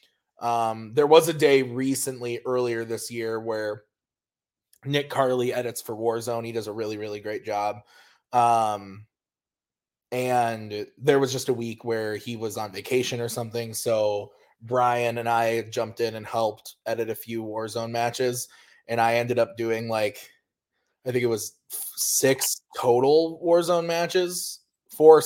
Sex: male